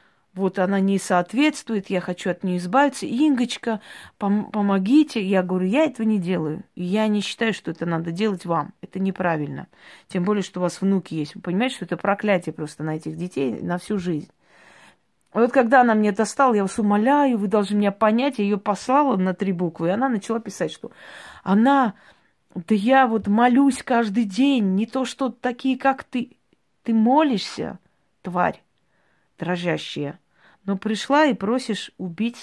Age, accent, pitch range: 20-39, native, 190-245 Hz